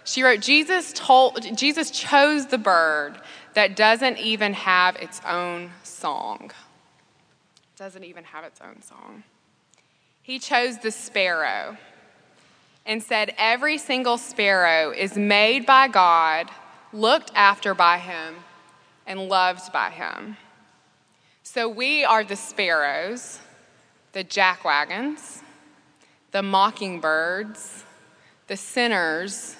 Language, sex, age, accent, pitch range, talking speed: English, female, 20-39, American, 180-225 Hz, 110 wpm